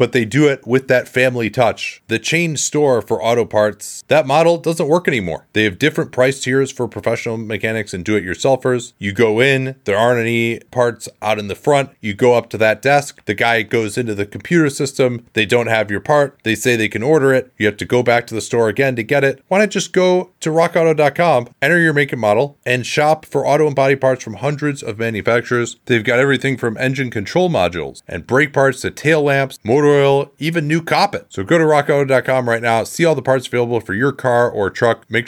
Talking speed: 225 wpm